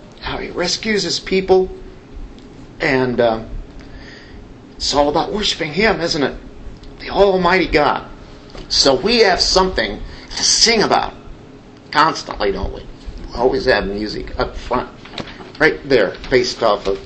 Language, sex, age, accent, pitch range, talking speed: English, male, 50-69, American, 110-175 Hz, 135 wpm